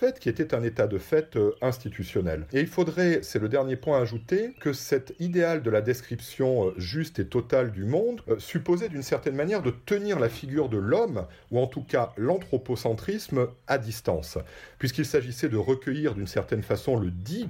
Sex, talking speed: male, 180 wpm